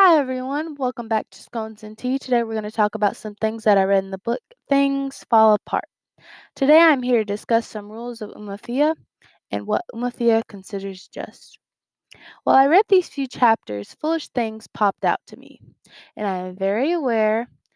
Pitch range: 205-265 Hz